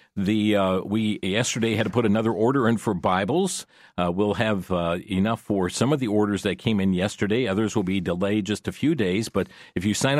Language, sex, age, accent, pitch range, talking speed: English, male, 50-69, American, 95-120 Hz, 225 wpm